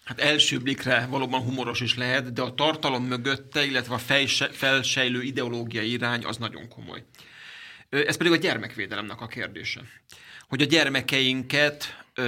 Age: 30-49